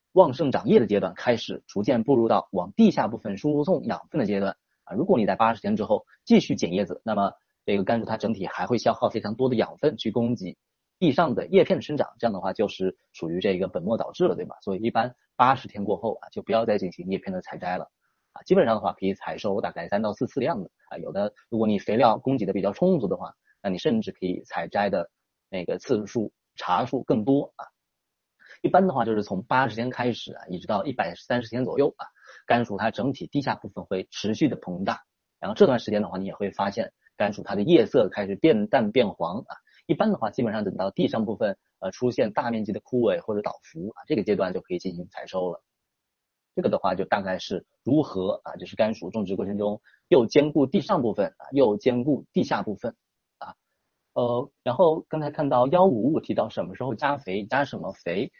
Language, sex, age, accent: Chinese, male, 30-49, native